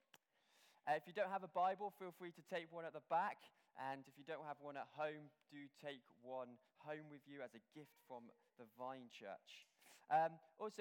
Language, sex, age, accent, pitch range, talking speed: English, male, 20-39, British, 135-185 Hz, 205 wpm